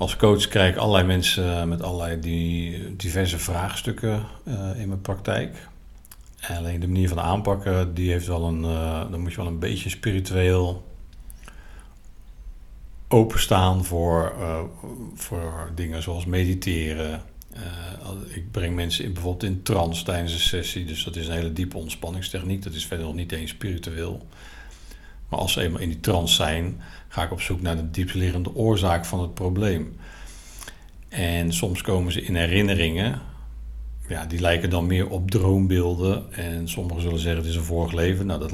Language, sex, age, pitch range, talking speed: Dutch, male, 50-69, 85-95 Hz, 155 wpm